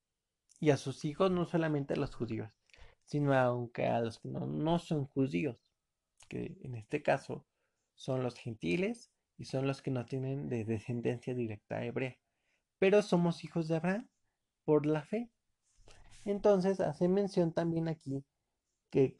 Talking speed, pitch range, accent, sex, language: 155 wpm, 125-160 Hz, Mexican, male, Spanish